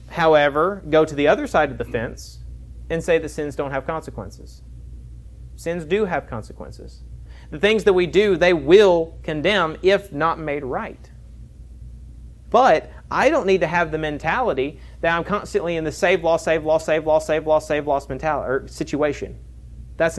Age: 30-49